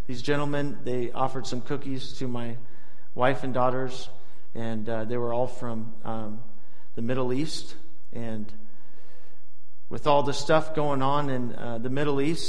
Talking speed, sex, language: 160 wpm, male, English